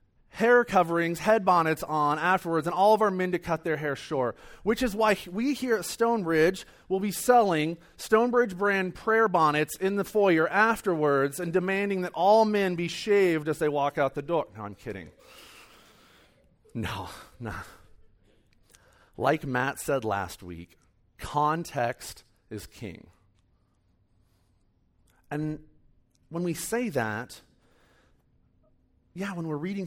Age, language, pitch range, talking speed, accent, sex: 40-59, English, 120-195 Hz, 140 wpm, American, male